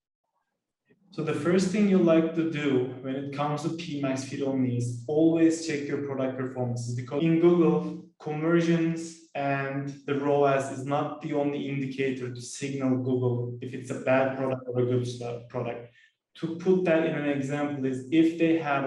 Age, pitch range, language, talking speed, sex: 20-39, 135-160 Hz, English, 175 wpm, male